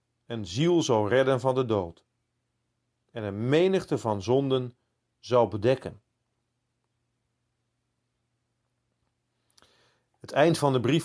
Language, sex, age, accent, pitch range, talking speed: Dutch, male, 40-59, Dutch, 120-155 Hz, 105 wpm